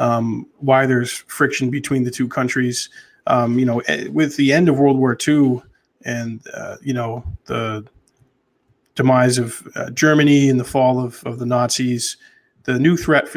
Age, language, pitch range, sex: 20-39, English, 120-135 Hz, male